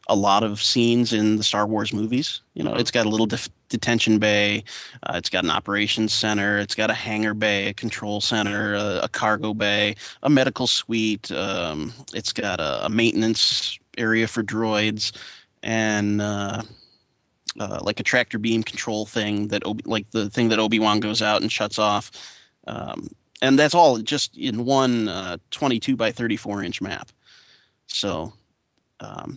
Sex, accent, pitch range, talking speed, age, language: male, American, 105-120 Hz, 170 wpm, 30-49, English